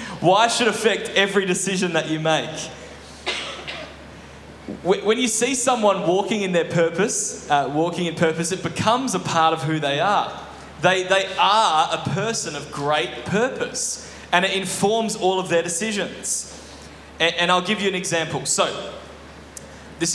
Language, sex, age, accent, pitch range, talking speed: English, male, 10-29, Australian, 155-200 Hz, 155 wpm